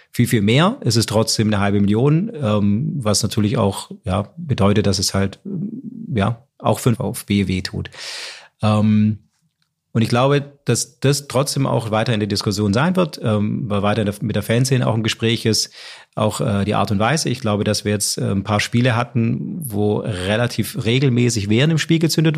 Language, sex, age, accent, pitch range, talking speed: German, male, 30-49, German, 105-130 Hz, 190 wpm